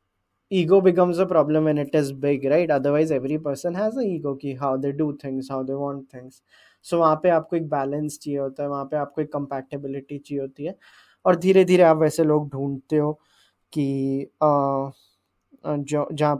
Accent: Indian